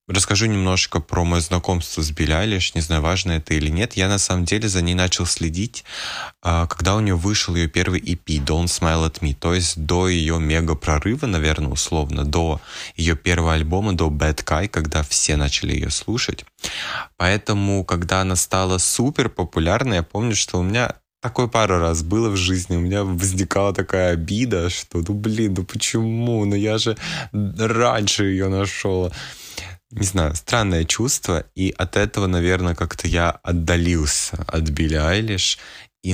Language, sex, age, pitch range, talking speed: Russian, male, 20-39, 80-100 Hz, 170 wpm